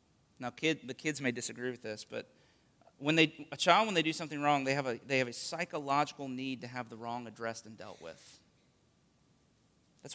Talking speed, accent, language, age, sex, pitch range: 205 wpm, American, English, 30-49, male, 125-155 Hz